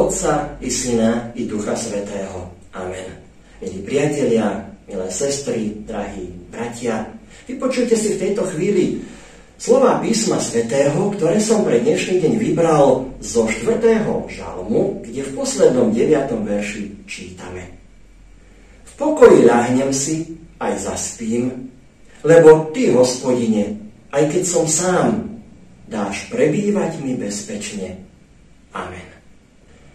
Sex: male